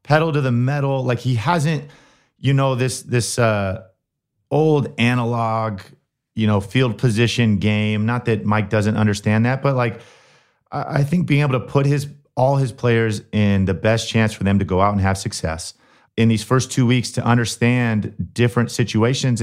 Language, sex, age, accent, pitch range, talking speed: English, male, 30-49, American, 100-130 Hz, 180 wpm